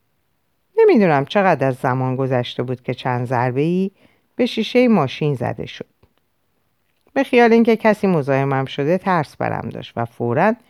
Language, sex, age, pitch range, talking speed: Persian, female, 50-69, 125-195 Hz, 145 wpm